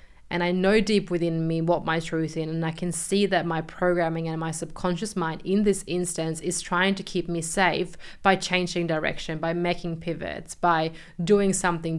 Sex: female